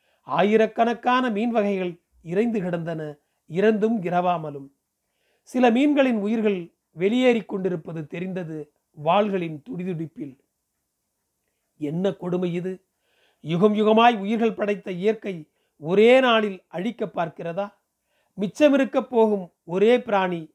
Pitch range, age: 175-225 Hz, 40-59